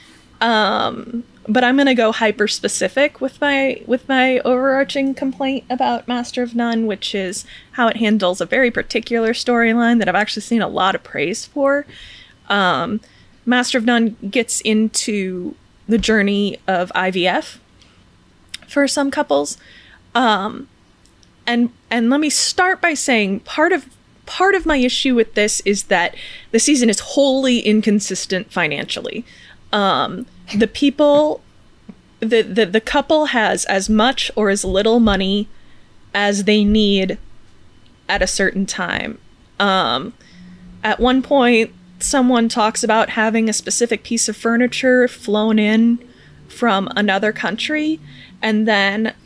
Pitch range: 195-250 Hz